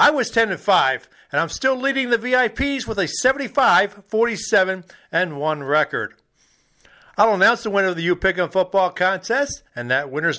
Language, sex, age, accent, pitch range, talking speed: English, male, 50-69, American, 180-245 Hz, 150 wpm